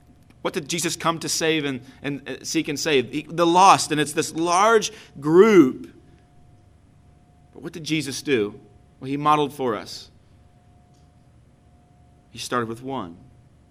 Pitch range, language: 115-155 Hz, English